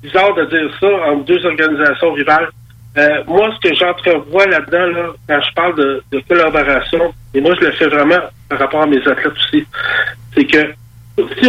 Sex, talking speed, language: male, 190 wpm, French